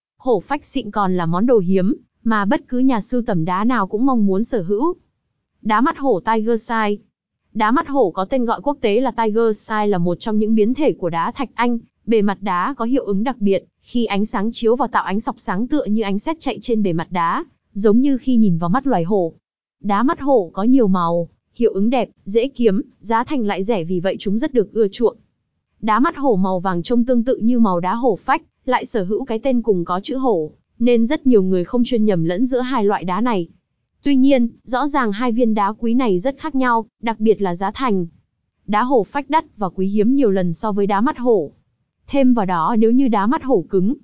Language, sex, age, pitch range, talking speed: Vietnamese, female, 20-39, 200-255 Hz, 240 wpm